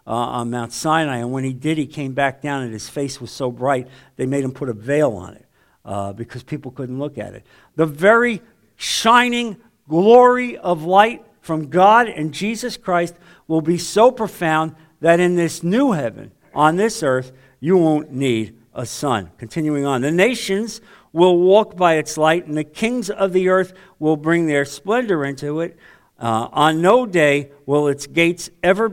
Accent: American